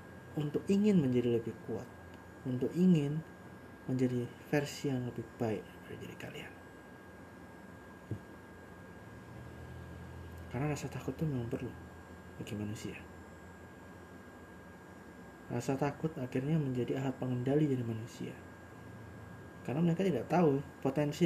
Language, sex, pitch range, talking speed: Indonesian, male, 90-125 Hz, 100 wpm